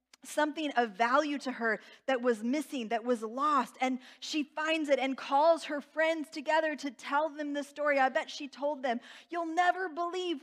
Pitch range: 250-315 Hz